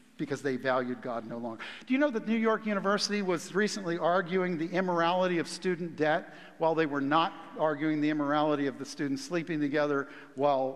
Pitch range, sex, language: 150-205 Hz, male, English